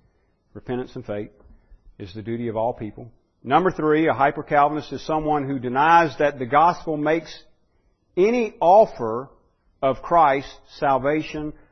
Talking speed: 135 wpm